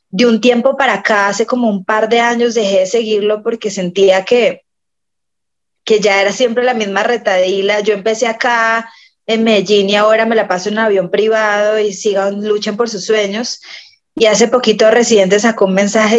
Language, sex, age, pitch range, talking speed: Spanish, female, 20-39, 210-260 Hz, 190 wpm